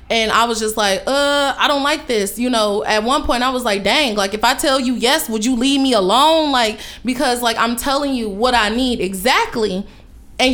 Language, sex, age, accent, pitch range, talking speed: English, female, 20-39, American, 210-260 Hz, 235 wpm